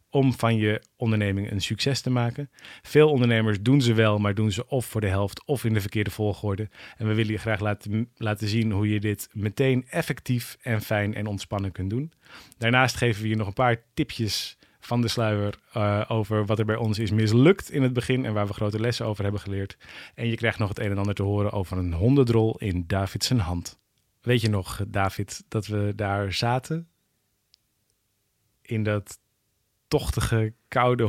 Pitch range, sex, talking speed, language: 105-120 Hz, male, 195 wpm, Dutch